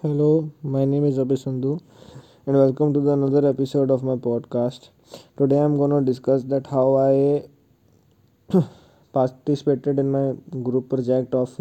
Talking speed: 150 wpm